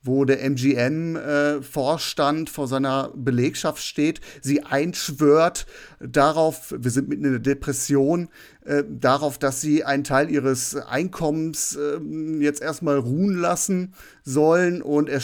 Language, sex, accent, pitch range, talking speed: German, male, German, 140-180 Hz, 120 wpm